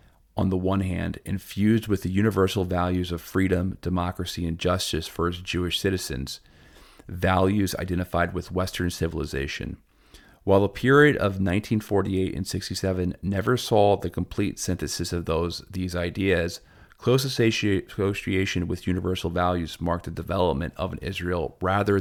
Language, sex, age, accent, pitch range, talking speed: English, male, 40-59, American, 85-95 Hz, 140 wpm